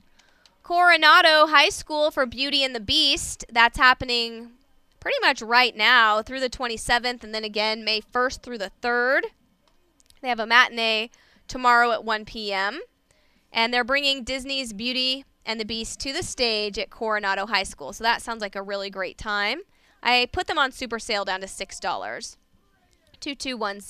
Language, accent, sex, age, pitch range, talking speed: English, American, female, 20-39, 215-275 Hz, 165 wpm